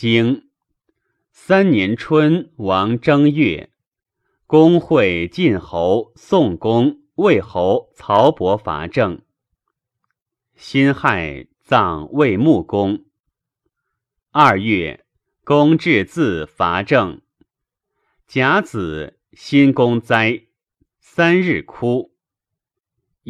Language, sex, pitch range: Chinese, male, 105-165 Hz